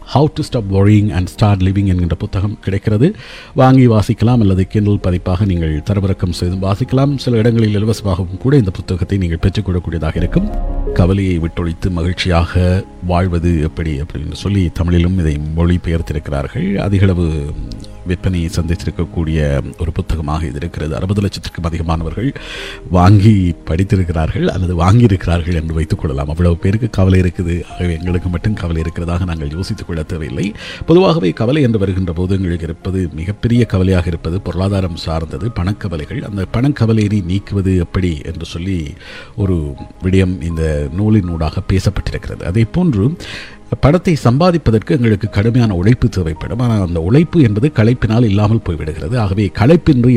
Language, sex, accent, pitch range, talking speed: Tamil, male, native, 85-110 Hz, 125 wpm